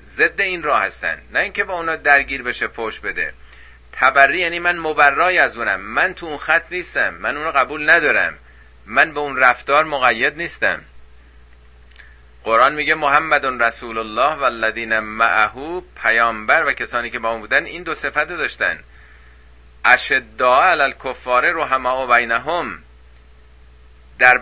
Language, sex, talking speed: Persian, male, 145 wpm